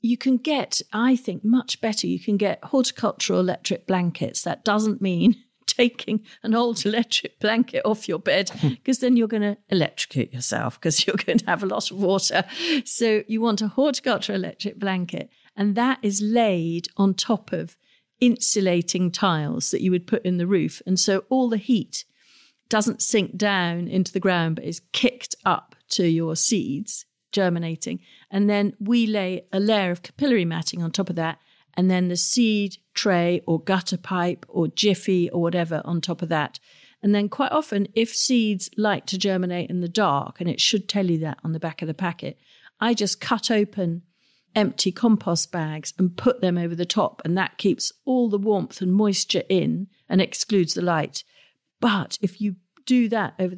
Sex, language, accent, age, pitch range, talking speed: female, English, British, 50-69, 175-225 Hz, 185 wpm